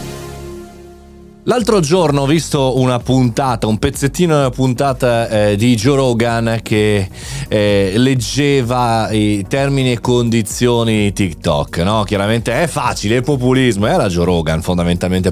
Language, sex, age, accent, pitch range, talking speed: Italian, male, 30-49, native, 100-130 Hz, 135 wpm